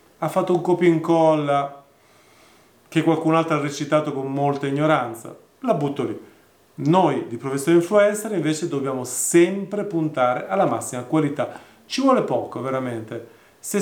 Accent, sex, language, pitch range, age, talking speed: native, male, Italian, 130-175 Hz, 30-49, 140 wpm